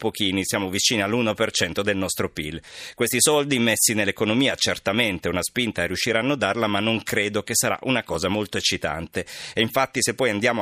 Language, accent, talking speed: Italian, native, 185 wpm